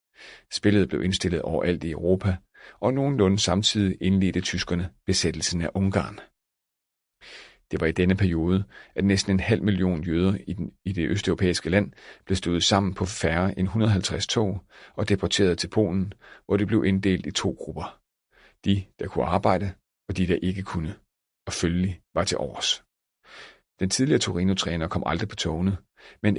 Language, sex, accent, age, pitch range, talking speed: Danish, male, native, 40-59, 85-100 Hz, 160 wpm